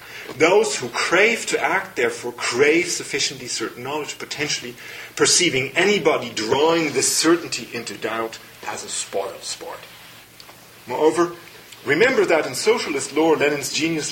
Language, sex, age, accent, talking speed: English, male, 40-59, German, 125 wpm